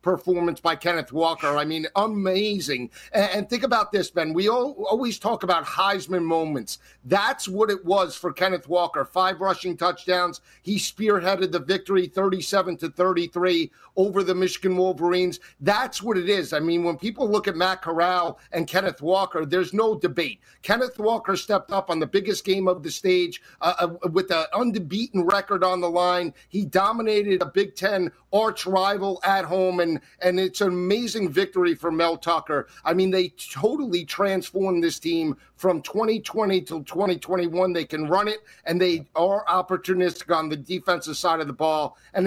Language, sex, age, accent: English, male, 50-69, American